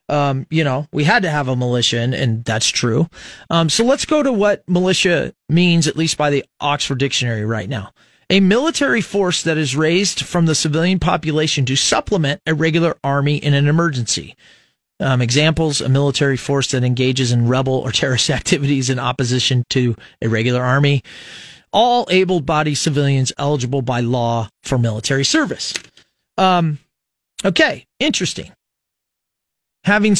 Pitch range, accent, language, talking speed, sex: 135-185 Hz, American, English, 155 wpm, male